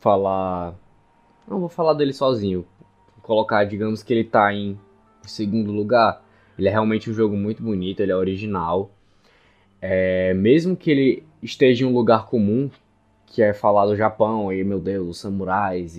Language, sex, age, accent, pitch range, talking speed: Portuguese, male, 10-29, Brazilian, 100-130 Hz, 160 wpm